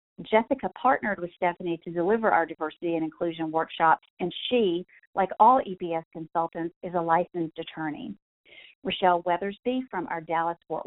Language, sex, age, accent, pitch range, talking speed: English, female, 40-59, American, 165-215 Hz, 145 wpm